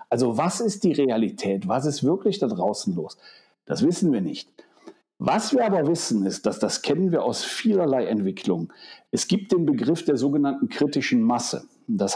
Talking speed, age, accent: 180 wpm, 60-79, German